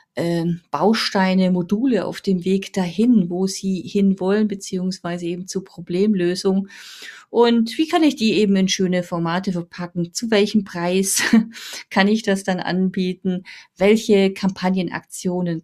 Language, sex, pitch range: German, female, 175-215 Hz